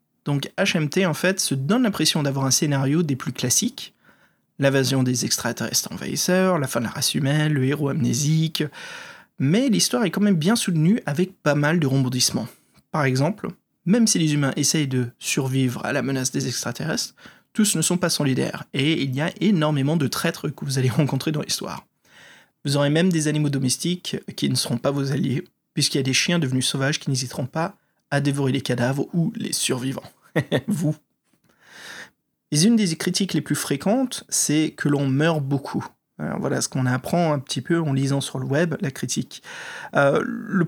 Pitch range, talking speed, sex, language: 135-170 Hz, 185 wpm, male, French